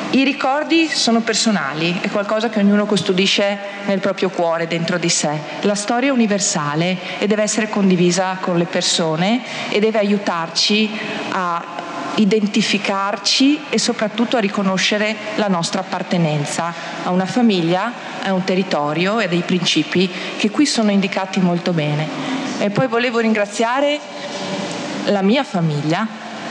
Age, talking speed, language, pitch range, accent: 40-59, 140 wpm, Italian, 175-215 Hz, native